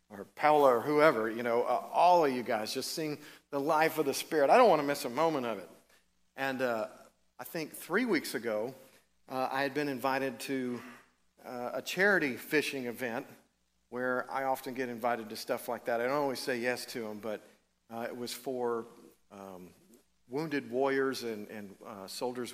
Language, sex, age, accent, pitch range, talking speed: English, male, 50-69, American, 115-135 Hz, 195 wpm